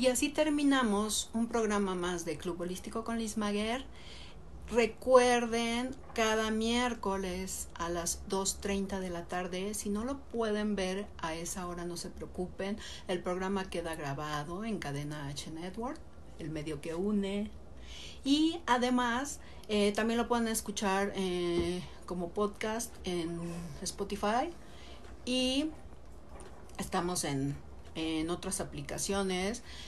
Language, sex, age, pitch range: Spanish, female, 50-69, 175-215 Hz